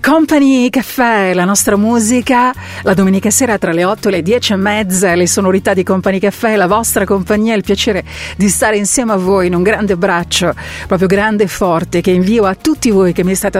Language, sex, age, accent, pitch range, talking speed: Italian, female, 40-59, native, 185-245 Hz, 205 wpm